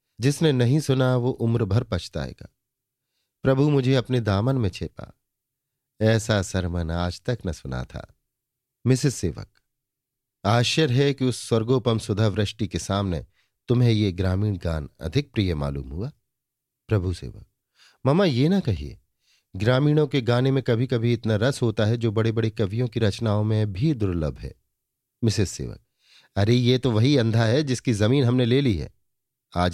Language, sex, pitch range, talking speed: Hindi, male, 105-135 Hz, 160 wpm